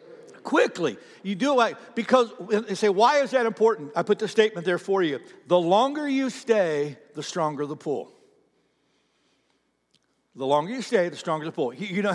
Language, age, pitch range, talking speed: English, 60-79, 190-260 Hz, 180 wpm